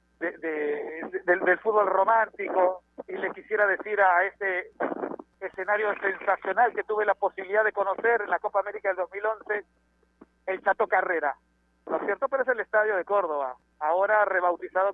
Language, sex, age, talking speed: Spanish, male, 50-69, 160 wpm